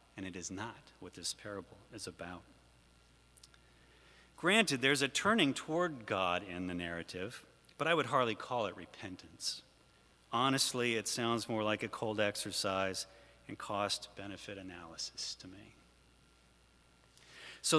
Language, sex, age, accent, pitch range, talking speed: English, male, 40-59, American, 95-135 Hz, 135 wpm